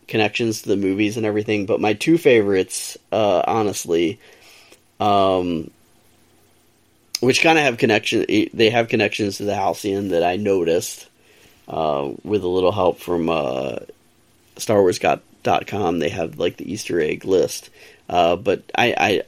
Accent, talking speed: American, 145 wpm